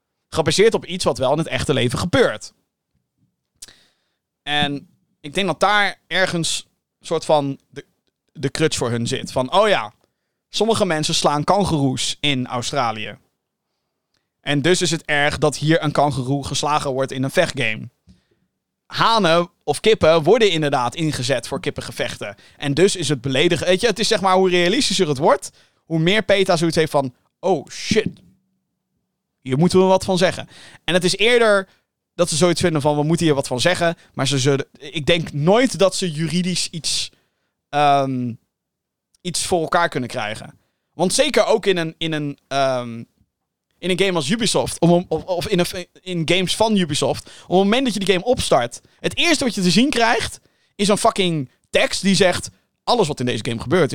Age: 20-39